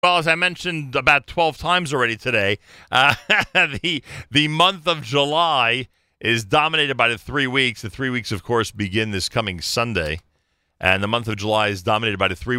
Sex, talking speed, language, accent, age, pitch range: male, 190 wpm, English, American, 40-59, 105-140 Hz